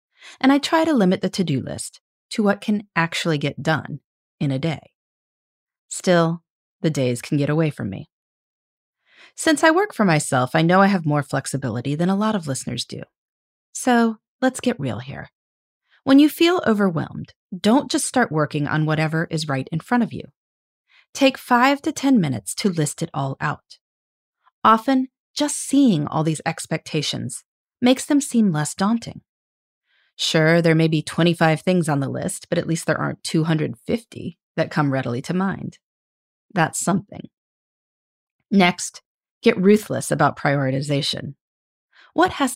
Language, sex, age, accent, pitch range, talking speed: English, female, 30-49, American, 155-240 Hz, 160 wpm